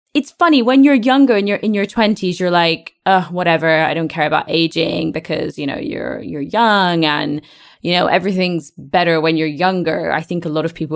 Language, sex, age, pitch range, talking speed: English, female, 20-39, 155-205 Hz, 210 wpm